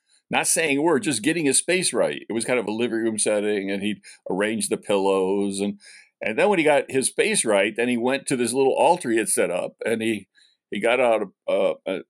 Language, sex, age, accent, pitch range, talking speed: English, male, 60-79, American, 115-150 Hz, 245 wpm